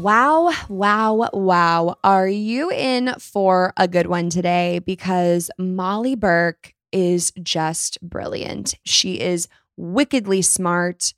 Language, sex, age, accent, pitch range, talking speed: English, female, 20-39, American, 175-225 Hz, 115 wpm